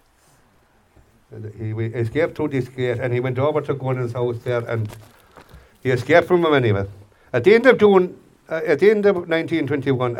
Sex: male